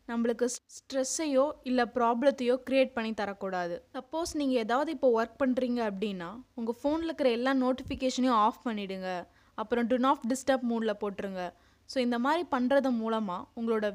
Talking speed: 140 wpm